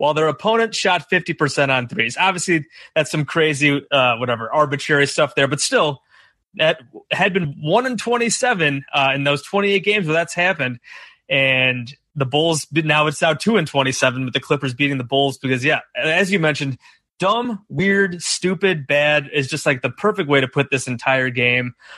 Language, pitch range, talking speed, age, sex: English, 135-170 Hz, 175 wpm, 30-49, male